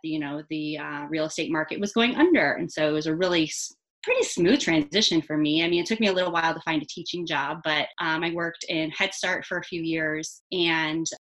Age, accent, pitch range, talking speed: 30-49, American, 160-185 Hz, 250 wpm